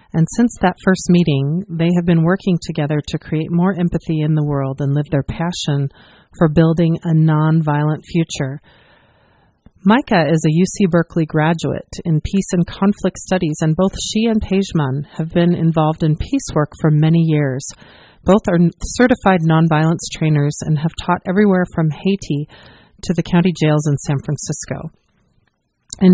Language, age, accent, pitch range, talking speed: English, 40-59, American, 155-190 Hz, 160 wpm